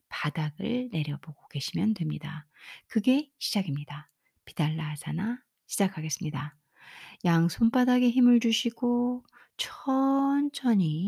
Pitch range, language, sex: 160-245 Hz, Korean, female